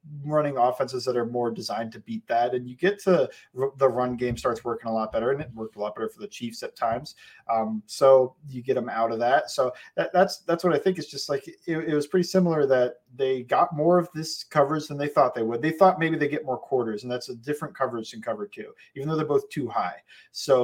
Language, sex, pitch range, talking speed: English, male, 120-155 Hz, 260 wpm